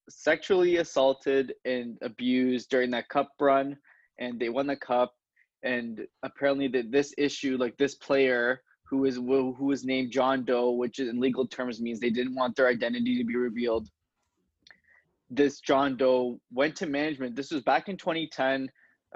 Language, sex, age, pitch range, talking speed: English, male, 20-39, 125-140 Hz, 165 wpm